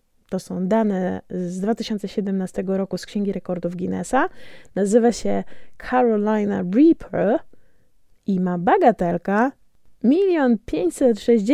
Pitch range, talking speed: 185-260 Hz, 95 wpm